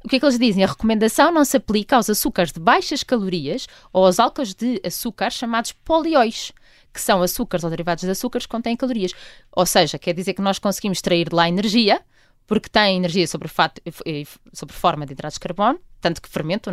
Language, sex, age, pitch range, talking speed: Portuguese, female, 20-39, 180-225 Hz, 205 wpm